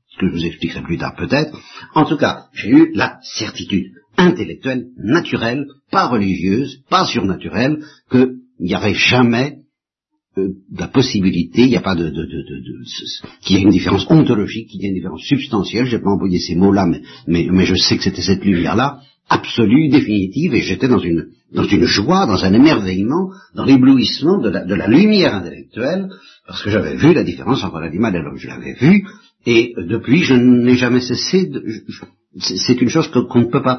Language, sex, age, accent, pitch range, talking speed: French, male, 60-79, French, 95-140 Hz, 205 wpm